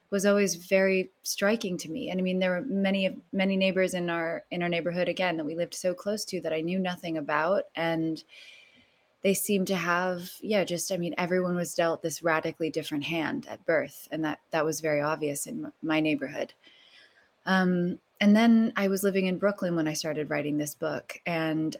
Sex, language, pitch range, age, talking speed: female, English, 165-195 Hz, 20-39, 200 wpm